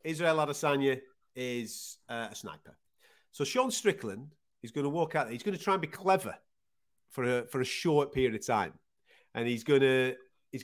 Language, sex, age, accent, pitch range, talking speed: English, male, 30-49, British, 125-185 Hz, 185 wpm